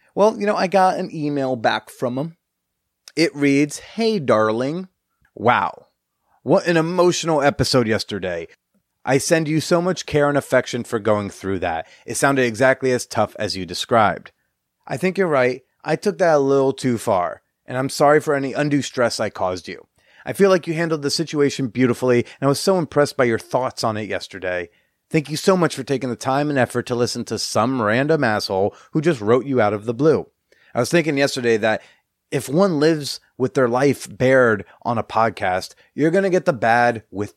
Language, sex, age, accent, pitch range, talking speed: English, male, 30-49, American, 115-150 Hz, 200 wpm